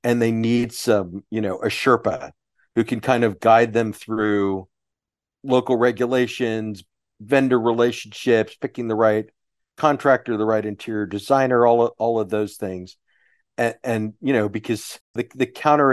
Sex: male